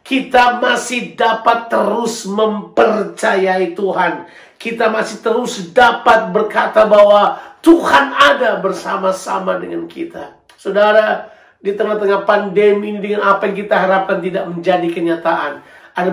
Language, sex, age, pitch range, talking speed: Indonesian, male, 50-69, 170-220 Hz, 115 wpm